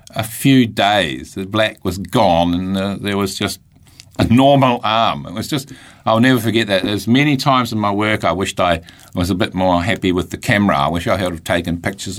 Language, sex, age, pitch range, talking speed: English, male, 50-69, 80-110 Hz, 220 wpm